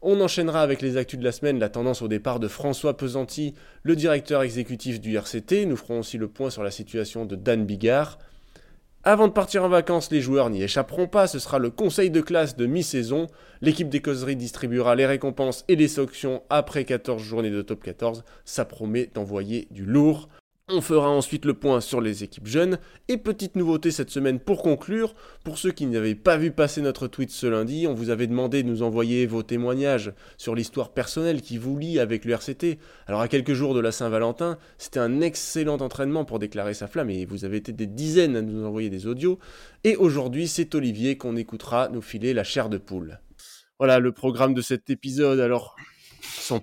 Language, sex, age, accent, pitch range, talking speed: French, male, 20-39, French, 115-155 Hz, 205 wpm